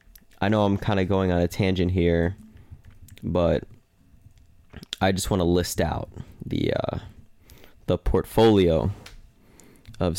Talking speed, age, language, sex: 130 wpm, 20-39, English, male